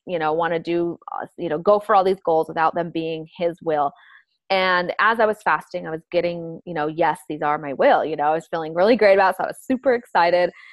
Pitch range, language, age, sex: 170-220 Hz, English, 20-39, female